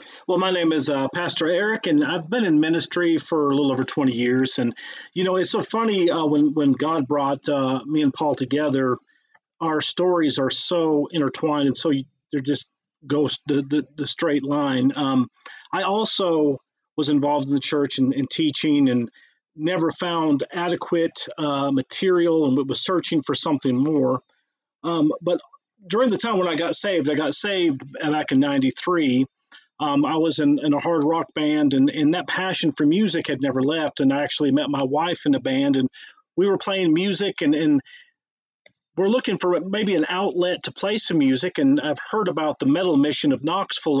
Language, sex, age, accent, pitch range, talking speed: English, male, 40-59, American, 145-185 Hz, 195 wpm